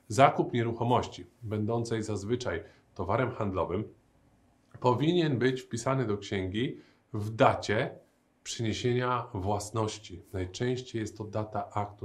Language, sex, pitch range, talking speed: Polish, male, 105-130 Hz, 100 wpm